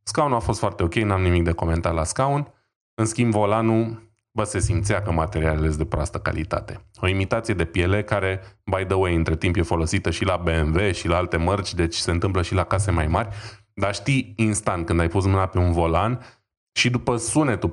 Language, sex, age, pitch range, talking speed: Romanian, male, 20-39, 90-115 Hz, 215 wpm